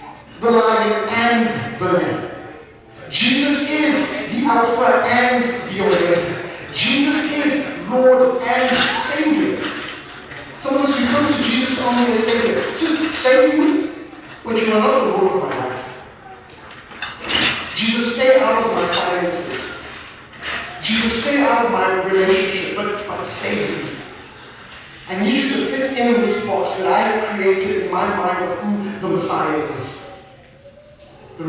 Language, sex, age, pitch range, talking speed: English, male, 40-59, 180-250 Hz, 140 wpm